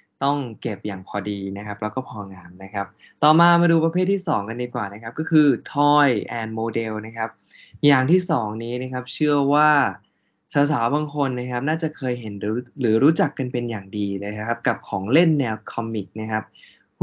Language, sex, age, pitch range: Thai, male, 20-39, 110-145 Hz